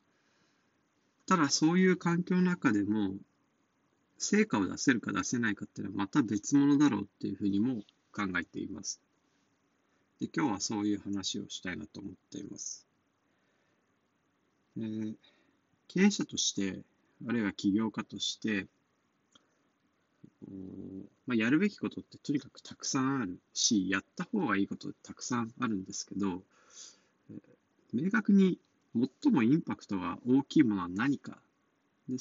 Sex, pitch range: male, 100-165 Hz